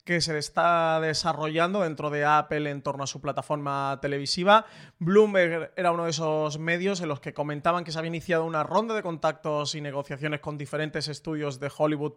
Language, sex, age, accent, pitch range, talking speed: Spanish, male, 30-49, Spanish, 150-175 Hz, 185 wpm